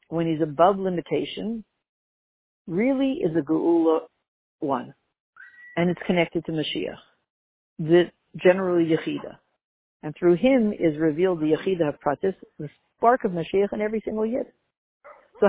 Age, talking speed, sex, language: 60-79, 135 wpm, female, English